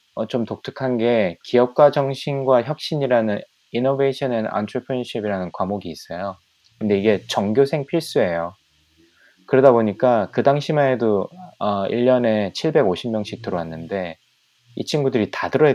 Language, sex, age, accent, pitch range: Korean, male, 20-39, native, 90-125 Hz